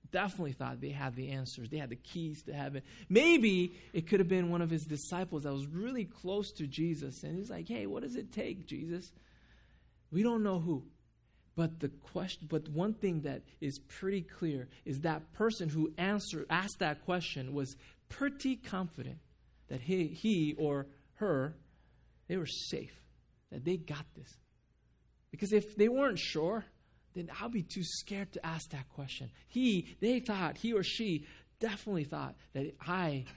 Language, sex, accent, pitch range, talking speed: English, male, American, 140-195 Hz, 175 wpm